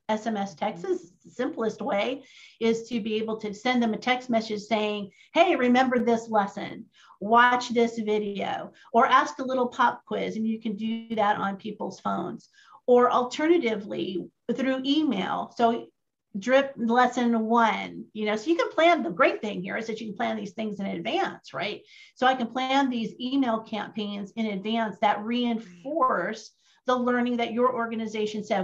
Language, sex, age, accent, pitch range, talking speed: English, female, 50-69, American, 210-255 Hz, 175 wpm